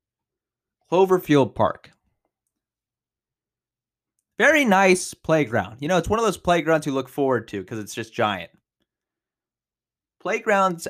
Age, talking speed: 20-39, 115 wpm